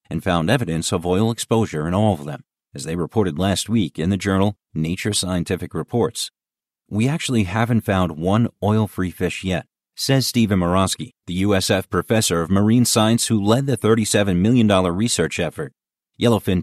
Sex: male